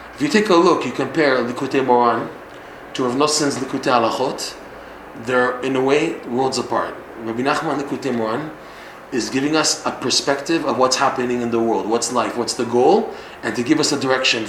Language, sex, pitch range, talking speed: English, male, 125-155 Hz, 190 wpm